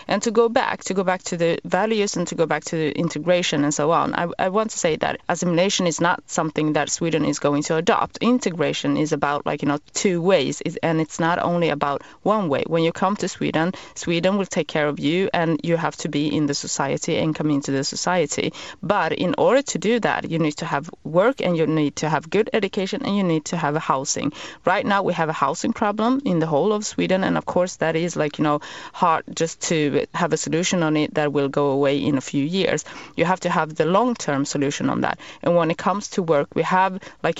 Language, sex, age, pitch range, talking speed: English, female, 30-49, 150-180 Hz, 250 wpm